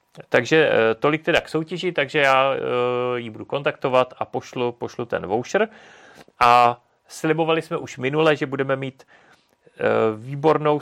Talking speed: 135 wpm